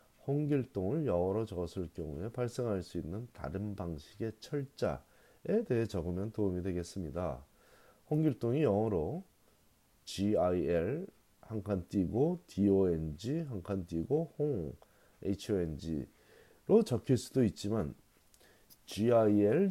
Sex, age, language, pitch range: male, 40-59, Korean, 90-130 Hz